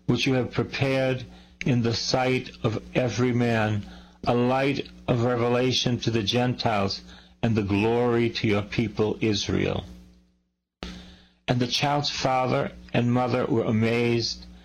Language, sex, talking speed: English, male, 130 wpm